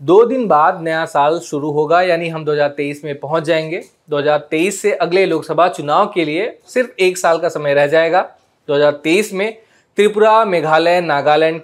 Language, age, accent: Hindi, 20-39, native